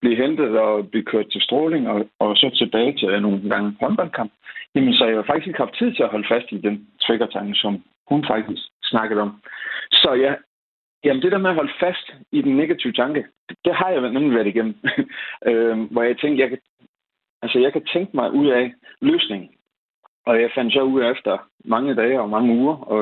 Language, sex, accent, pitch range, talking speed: Danish, male, native, 110-180 Hz, 215 wpm